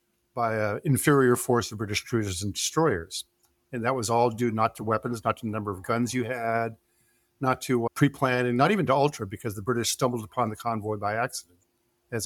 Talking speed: 205 wpm